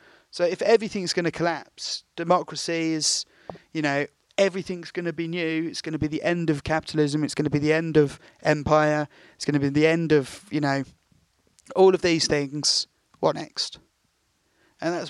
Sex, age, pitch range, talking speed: male, 30-49, 145-170 Hz, 190 wpm